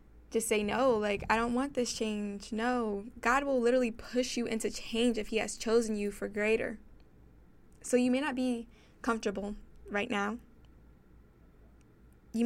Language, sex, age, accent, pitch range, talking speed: English, female, 10-29, American, 205-235 Hz, 160 wpm